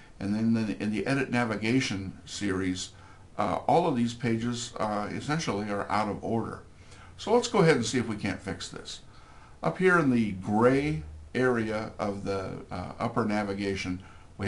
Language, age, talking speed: English, 60-79, 170 wpm